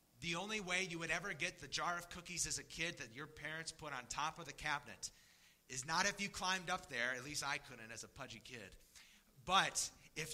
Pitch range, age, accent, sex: 105-165 Hz, 30-49, American, male